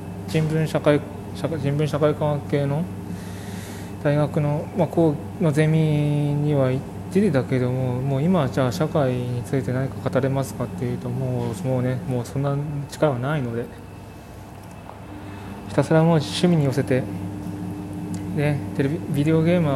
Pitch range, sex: 100-145 Hz, male